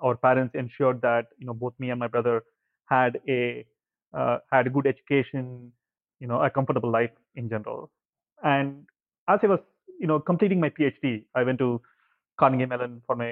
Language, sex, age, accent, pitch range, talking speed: English, male, 30-49, Indian, 120-145 Hz, 185 wpm